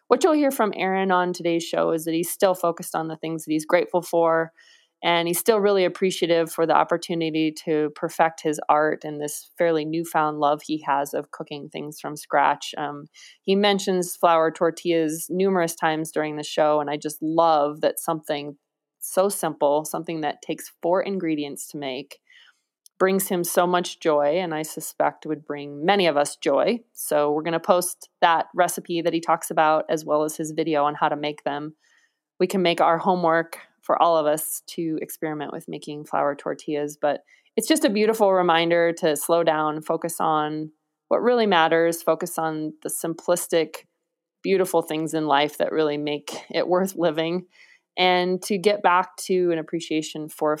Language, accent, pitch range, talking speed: English, American, 155-180 Hz, 185 wpm